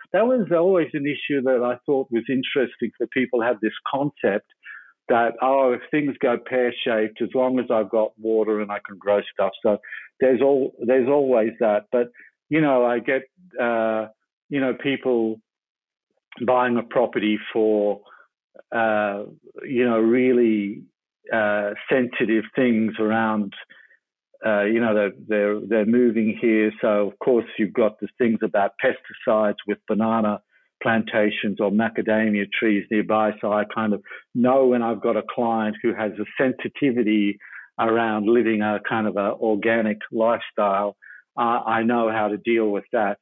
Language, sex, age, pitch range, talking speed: English, male, 60-79, 105-125 Hz, 160 wpm